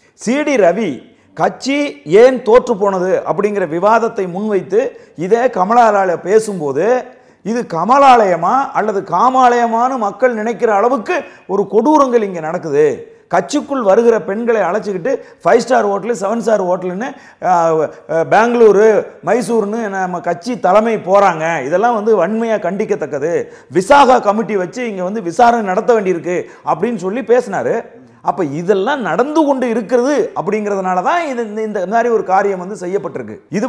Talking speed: 120 wpm